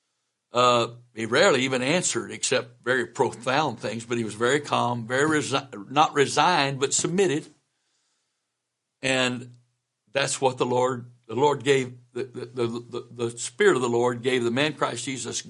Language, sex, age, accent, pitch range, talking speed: English, male, 60-79, American, 120-160 Hz, 165 wpm